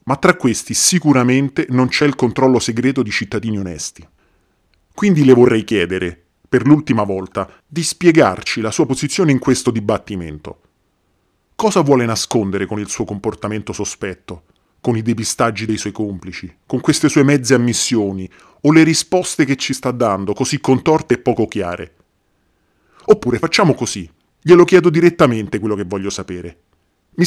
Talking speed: 150 wpm